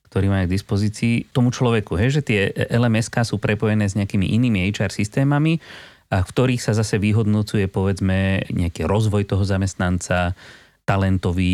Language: Slovak